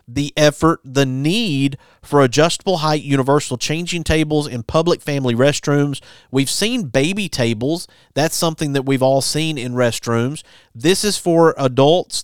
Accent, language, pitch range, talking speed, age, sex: American, English, 125-155 Hz, 145 wpm, 40-59, male